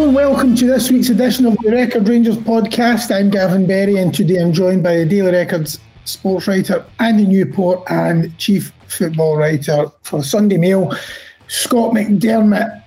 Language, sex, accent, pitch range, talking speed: English, male, British, 170-215 Hz, 160 wpm